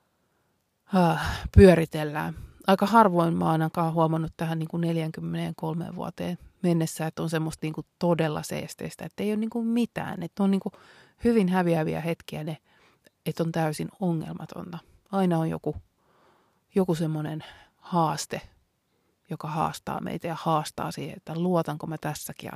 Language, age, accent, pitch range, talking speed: Finnish, 30-49, native, 155-185 Hz, 115 wpm